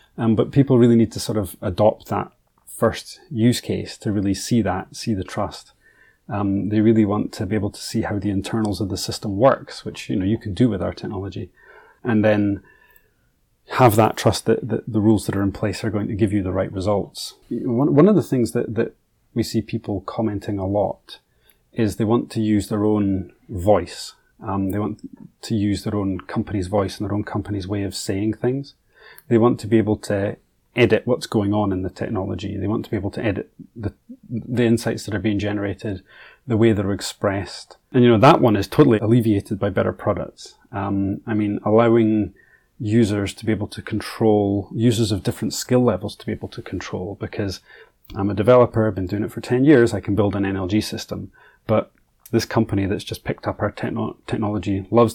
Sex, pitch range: male, 100-115 Hz